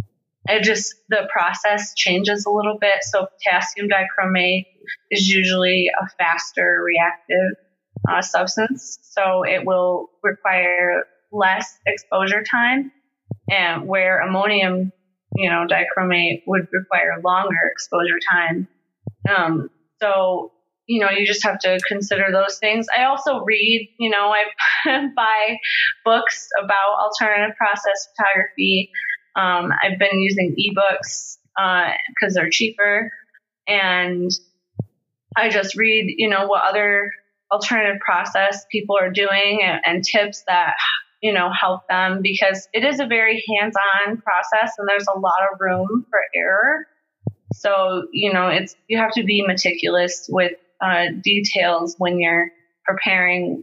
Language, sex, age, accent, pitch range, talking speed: English, female, 20-39, American, 185-210 Hz, 130 wpm